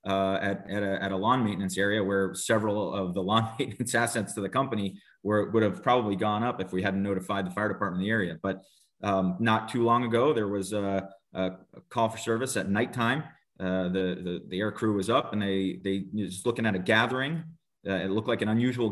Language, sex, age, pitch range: English, male, 30-49, 95-115 Hz